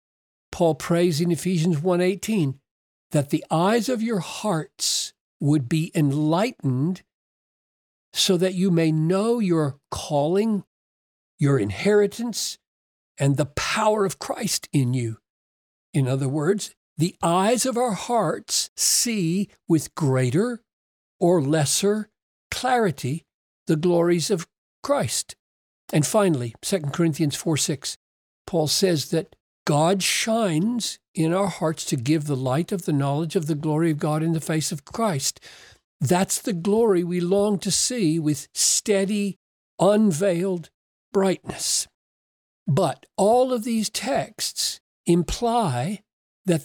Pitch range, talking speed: 145-200 Hz, 125 wpm